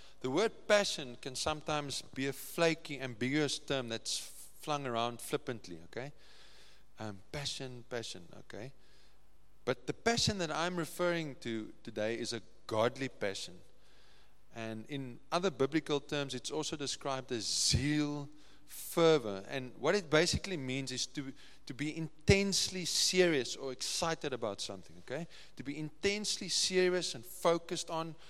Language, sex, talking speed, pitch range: English, male, 140 wpm, 110-155 Hz